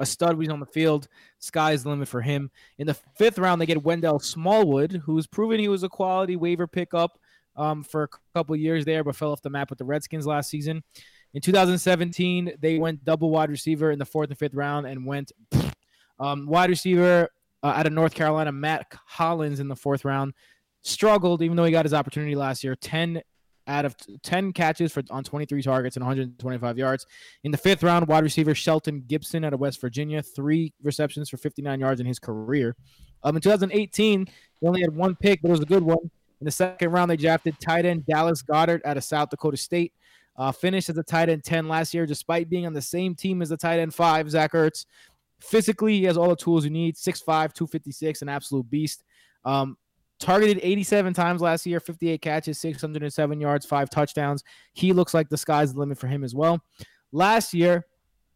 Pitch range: 145-170 Hz